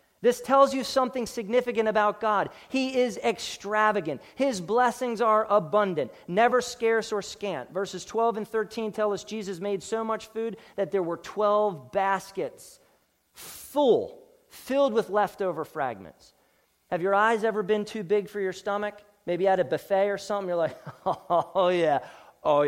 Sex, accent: male, American